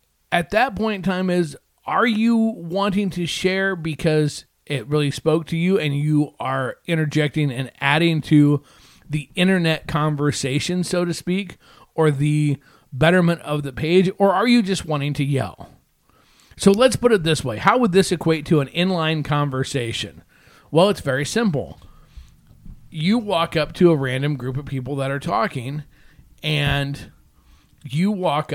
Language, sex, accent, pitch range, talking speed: English, male, American, 140-185 Hz, 160 wpm